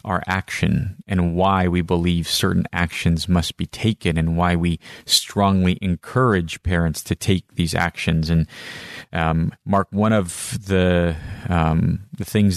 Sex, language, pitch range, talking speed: male, English, 85-105 Hz, 145 wpm